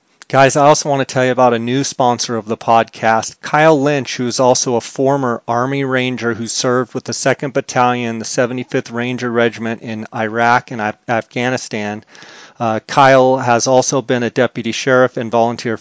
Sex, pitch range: male, 120-135 Hz